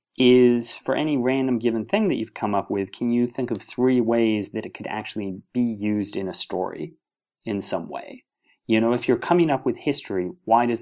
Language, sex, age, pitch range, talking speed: English, male, 30-49, 110-130 Hz, 215 wpm